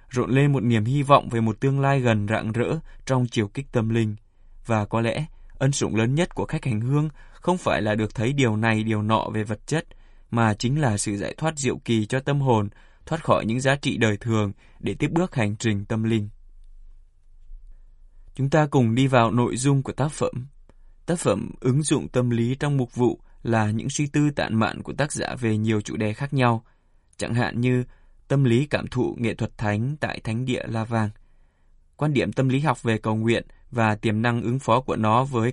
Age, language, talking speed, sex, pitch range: 20-39, Vietnamese, 220 wpm, male, 105-130 Hz